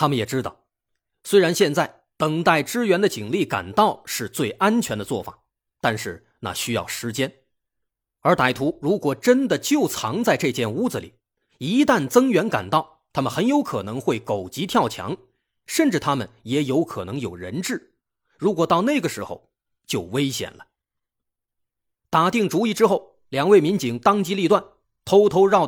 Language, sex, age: Chinese, male, 30-49